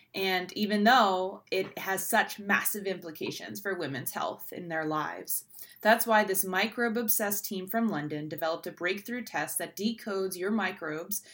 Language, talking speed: English, 160 wpm